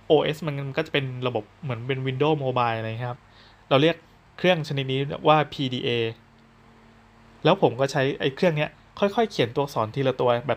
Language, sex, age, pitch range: Thai, male, 20-39, 115-150 Hz